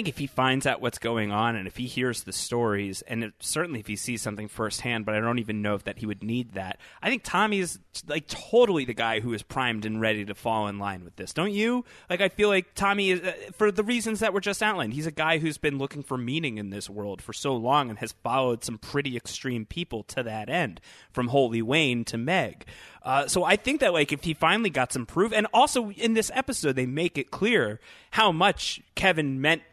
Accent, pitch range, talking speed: American, 110-160 Hz, 245 wpm